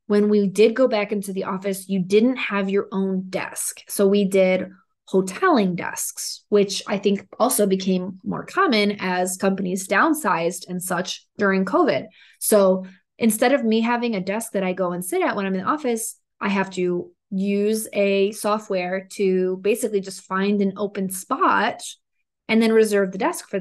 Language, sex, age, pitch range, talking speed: English, female, 20-39, 190-230 Hz, 180 wpm